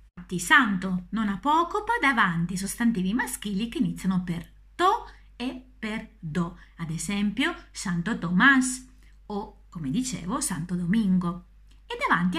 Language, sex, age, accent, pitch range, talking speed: Italian, female, 30-49, native, 180-270 Hz, 120 wpm